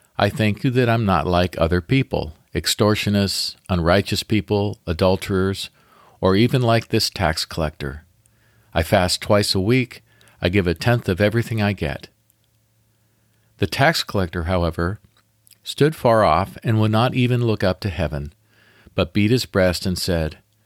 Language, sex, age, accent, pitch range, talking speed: English, male, 50-69, American, 90-115 Hz, 155 wpm